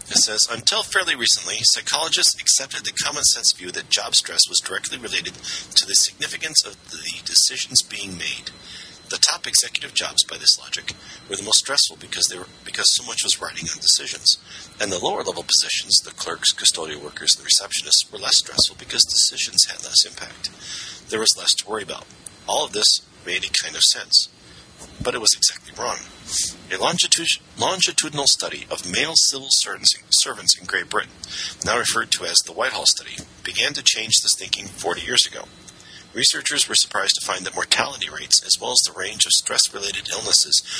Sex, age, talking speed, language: male, 40-59, 180 wpm, English